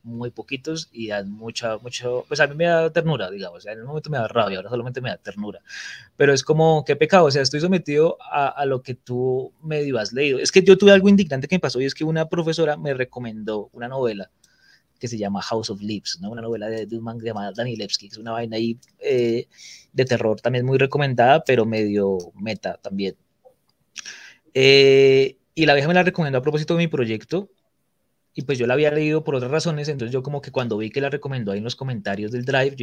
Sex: male